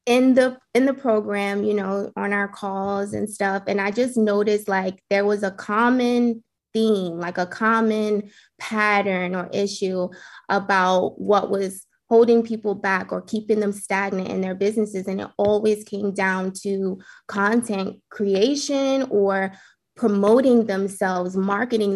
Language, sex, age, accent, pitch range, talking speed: English, female, 20-39, American, 200-245 Hz, 145 wpm